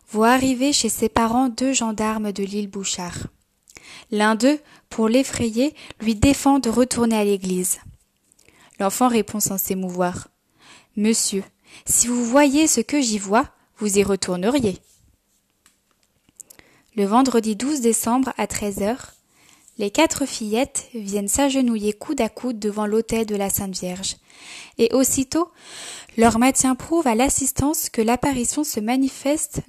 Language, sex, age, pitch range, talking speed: French, female, 20-39, 205-255 Hz, 135 wpm